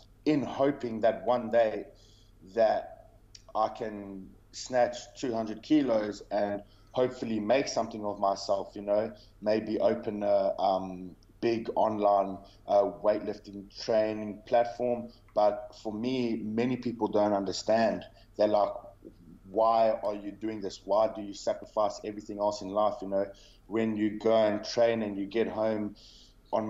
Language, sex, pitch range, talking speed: English, male, 100-110 Hz, 140 wpm